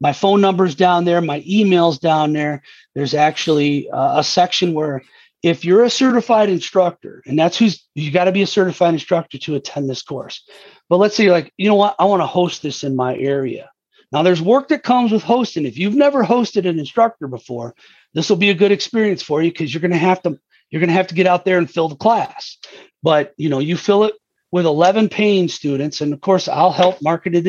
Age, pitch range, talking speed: 40-59, 150-190 Hz, 230 wpm